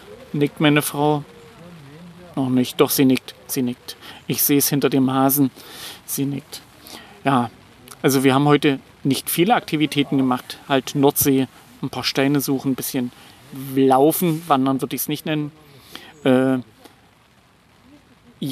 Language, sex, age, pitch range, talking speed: German, male, 40-59, 135-155 Hz, 140 wpm